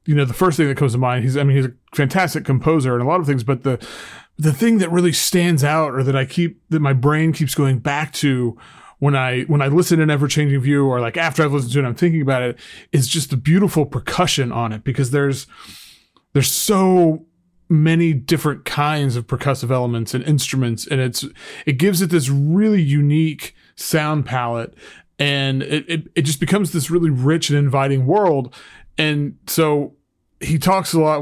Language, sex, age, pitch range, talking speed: English, male, 30-49, 135-165 Hz, 205 wpm